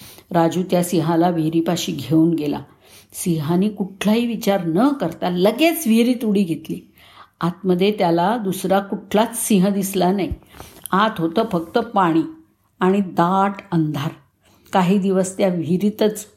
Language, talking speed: Marathi, 120 wpm